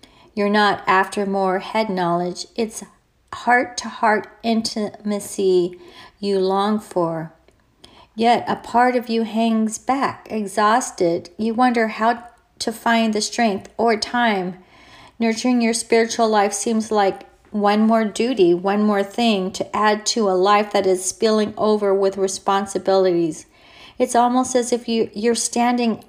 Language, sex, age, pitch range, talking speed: English, female, 40-59, 190-230 Hz, 135 wpm